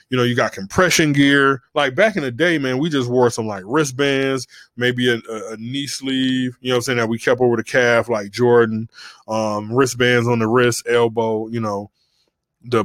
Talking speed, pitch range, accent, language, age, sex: 215 wpm, 115-135 Hz, American, English, 20-39, male